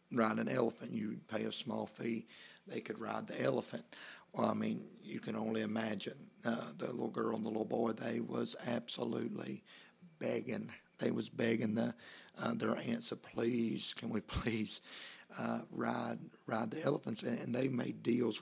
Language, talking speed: English, 170 wpm